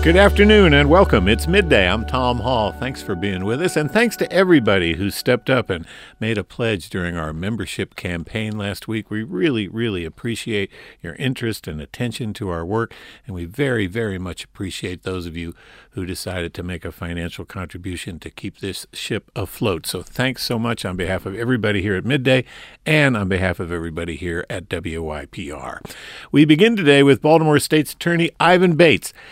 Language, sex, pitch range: English, male, 95-135 Hz